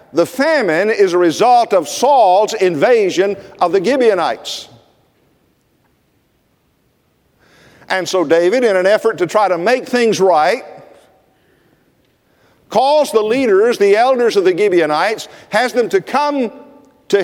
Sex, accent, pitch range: male, American, 200-315 Hz